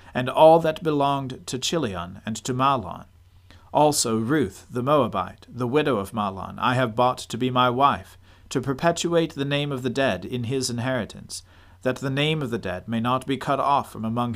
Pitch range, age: 95-135 Hz, 40-59